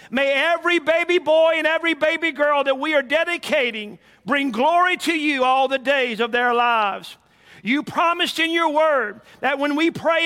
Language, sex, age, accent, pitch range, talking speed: English, male, 50-69, American, 255-325 Hz, 180 wpm